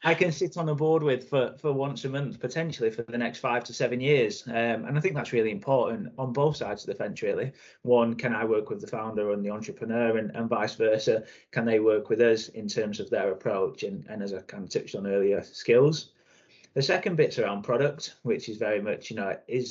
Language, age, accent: English, 20-39, British